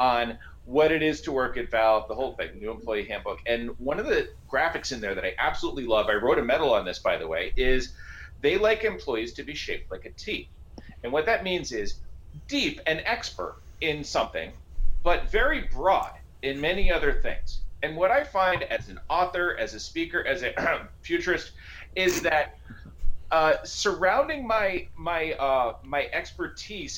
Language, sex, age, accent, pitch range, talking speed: English, male, 40-59, American, 115-190 Hz, 185 wpm